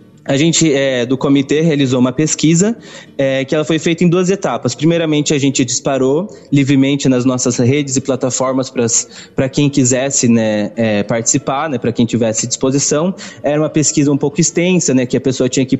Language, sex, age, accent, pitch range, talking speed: Portuguese, male, 20-39, Brazilian, 130-155 Hz, 190 wpm